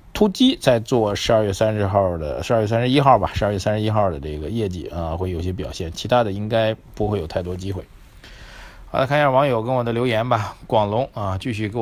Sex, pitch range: male, 95-130 Hz